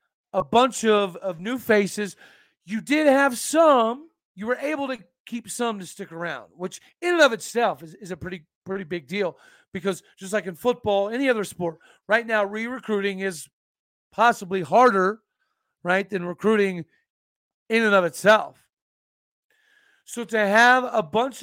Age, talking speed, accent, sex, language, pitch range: 40-59, 160 wpm, American, male, English, 175-225 Hz